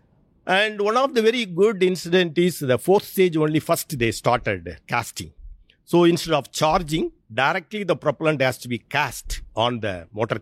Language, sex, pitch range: English, male, 110-150 Hz